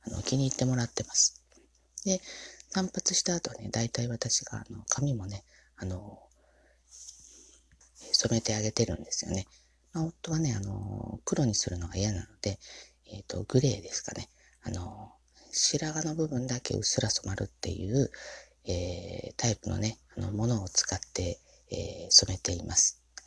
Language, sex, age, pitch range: Japanese, female, 30-49, 100-125 Hz